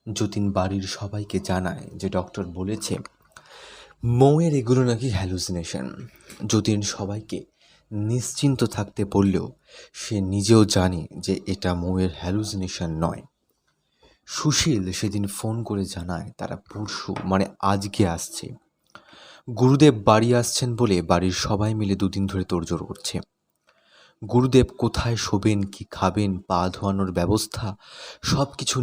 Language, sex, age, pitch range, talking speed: Bengali, male, 30-49, 95-115 Hz, 110 wpm